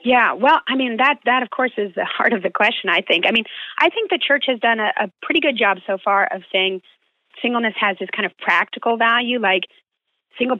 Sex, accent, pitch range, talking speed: female, American, 185-245 Hz, 240 wpm